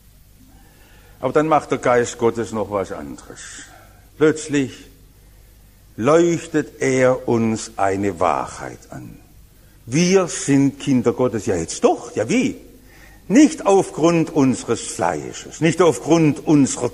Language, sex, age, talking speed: English, male, 60-79, 115 wpm